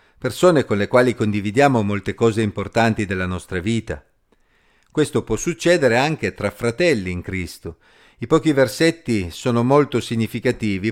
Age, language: 50-69, Italian